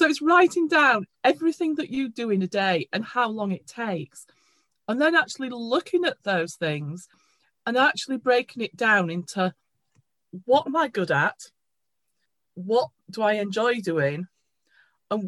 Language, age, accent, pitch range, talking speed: English, 40-59, British, 180-250 Hz, 155 wpm